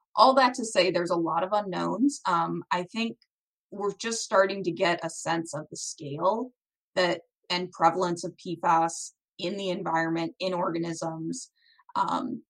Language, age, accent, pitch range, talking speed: English, 20-39, American, 170-215 Hz, 160 wpm